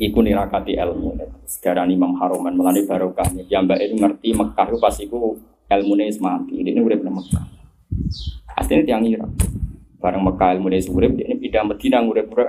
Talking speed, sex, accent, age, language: 175 wpm, male, native, 20-39, Indonesian